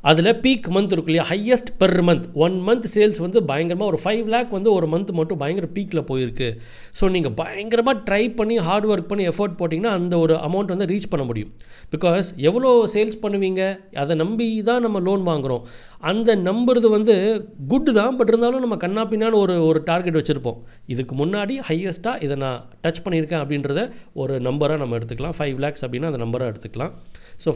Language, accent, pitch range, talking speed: Tamil, native, 140-205 Hz, 180 wpm